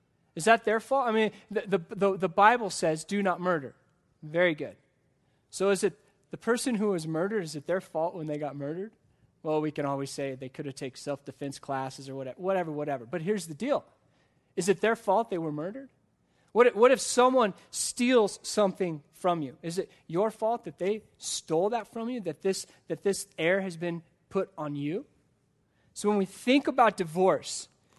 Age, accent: 20-39, American